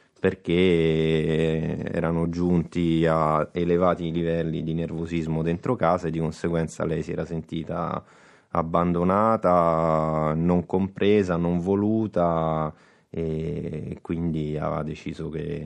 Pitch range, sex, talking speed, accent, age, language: 80-90 Hz, male, 105 wpm, native, 30-49, Italian